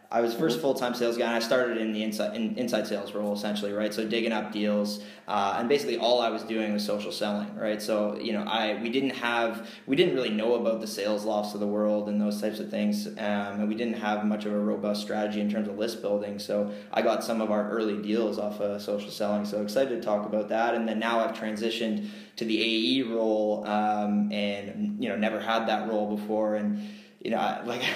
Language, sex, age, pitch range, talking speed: English, male, 20-39, 105-115 Hz, 245 wpm